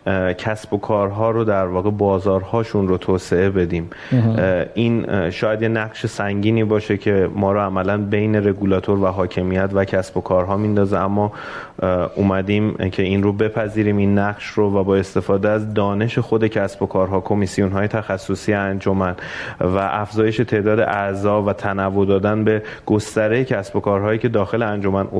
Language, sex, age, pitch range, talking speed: Persian, male, 30-49, 100-115 Hz, 155 wpm